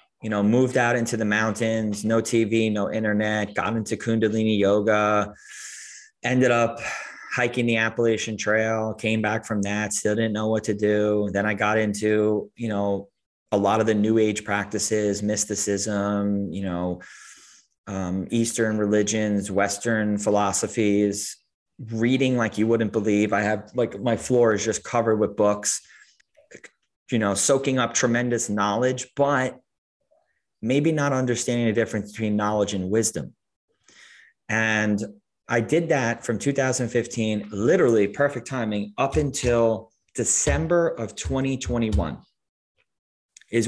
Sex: male